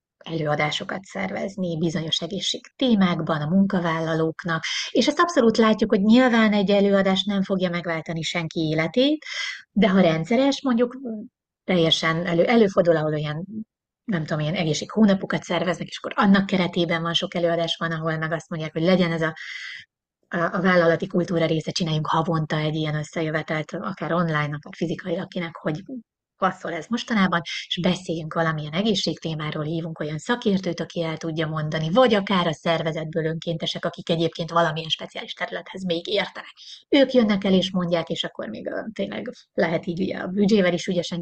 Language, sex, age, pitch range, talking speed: Hungarian, female, 30-49, 165-200 Hz, 155 wpm